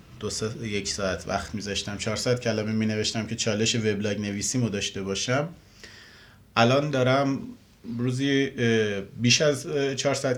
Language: Persian